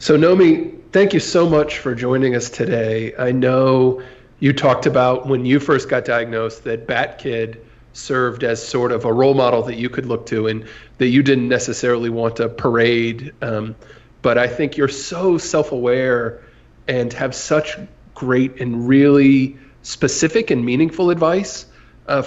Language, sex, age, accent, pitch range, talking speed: English, male, 40-59, American, 120-135 Hz, 160 wpm